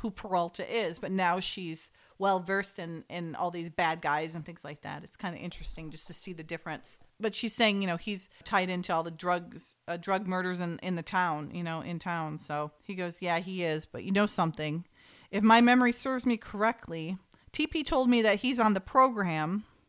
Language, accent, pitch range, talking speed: English, American, 175-230 Hz, 220 wpm